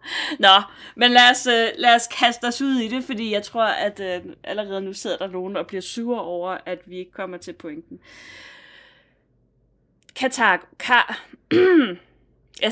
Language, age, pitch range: Danish, 20-39, 190-245 Hz